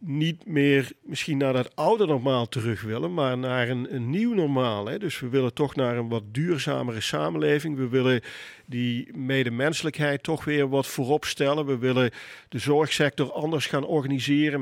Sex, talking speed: male, 160 wpm